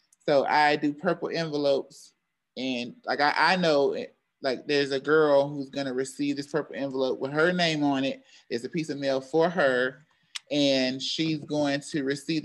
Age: 30-49